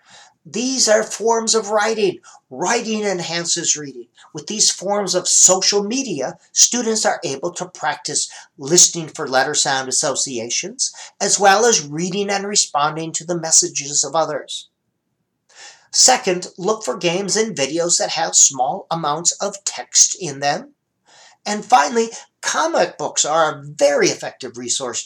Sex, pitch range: male, 150-210 Hz